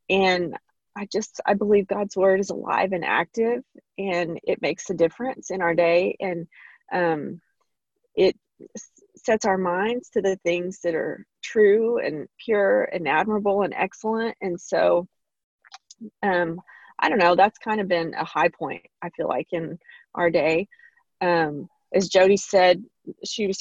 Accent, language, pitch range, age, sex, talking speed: American, English, 180-235 Hz, 30-49, female, 160 wpm